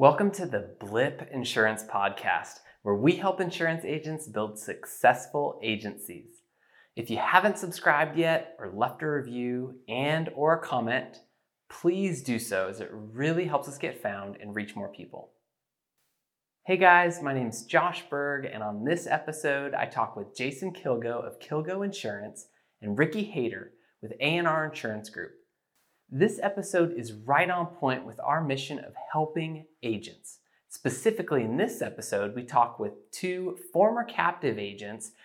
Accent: American